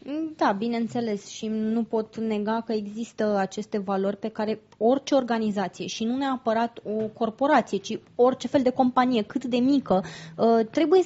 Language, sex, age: Romanian, female, 20-39